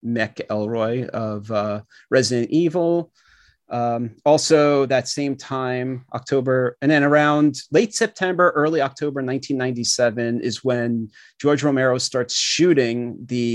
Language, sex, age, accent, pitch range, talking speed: English, male, 30-49, American, 115-140 Hz, 120 wpm